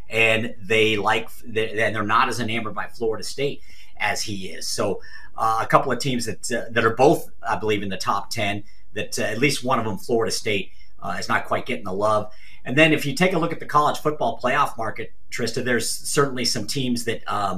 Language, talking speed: English, 230 wpm